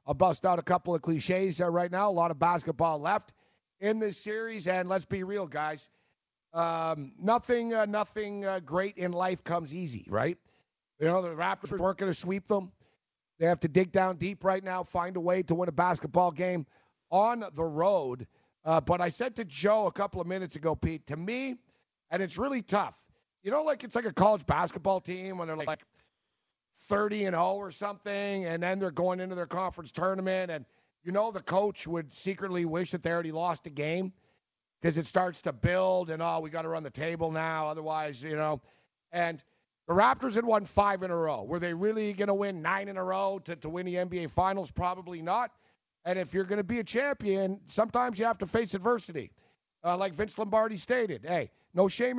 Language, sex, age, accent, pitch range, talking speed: English, male, 50-69, American, 170-200 Hz, 210 wpm